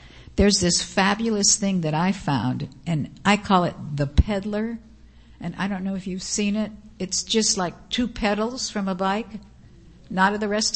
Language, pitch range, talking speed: English, 170-205 Hz, 185 wpm